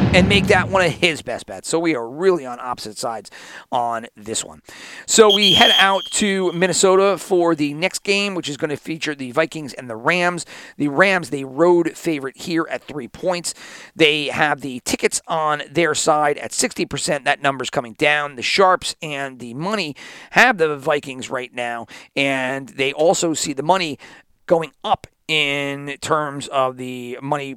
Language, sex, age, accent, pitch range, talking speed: English, male, 40-59, American, 130-175 Hz, 180 wpm